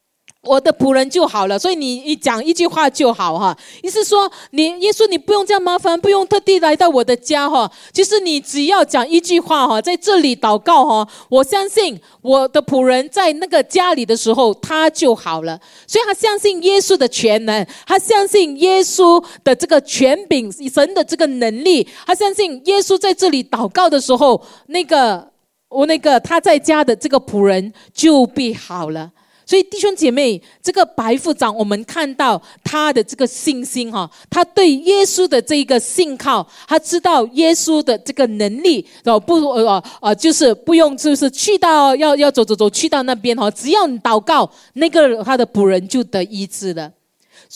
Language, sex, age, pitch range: Chinese, female, 40-59, 220-335 Hz